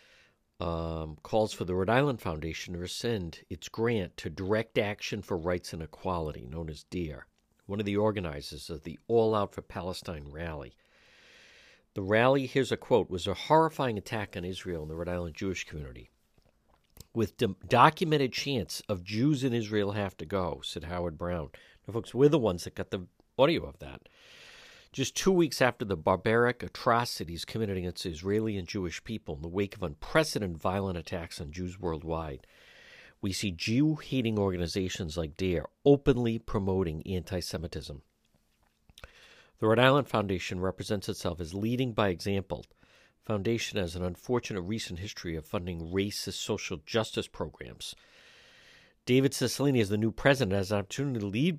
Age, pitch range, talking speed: 50-69, 90-115 Hz, 160 wpm